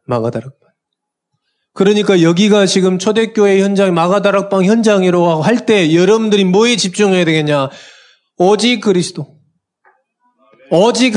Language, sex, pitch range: Korean, male, 155-210 Hz